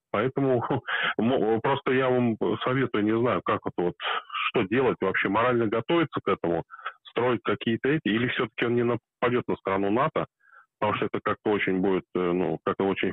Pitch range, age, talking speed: 100-130 Hz, 20-39, 175 wpm